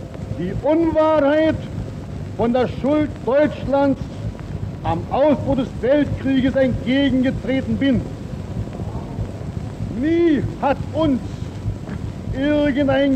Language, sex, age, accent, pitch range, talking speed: German, male, 60-79, German, 185-260 Hz, 75 wpm